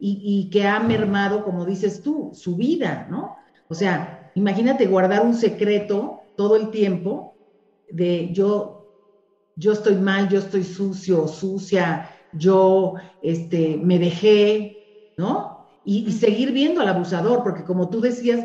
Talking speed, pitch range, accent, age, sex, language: 145 wpm, 180-220 Hz, Mexican, 40-59, female, English